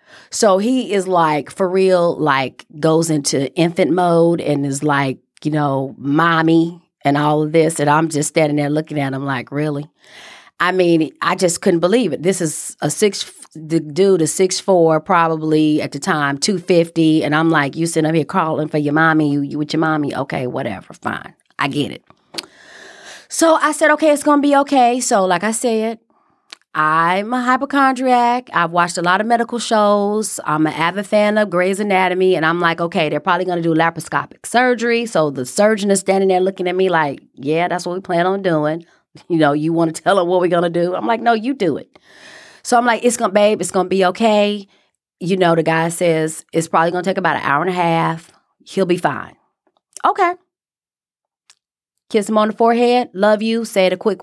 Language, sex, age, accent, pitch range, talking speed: English, female, 30-49, American, 155-210 Hz, 210 wpm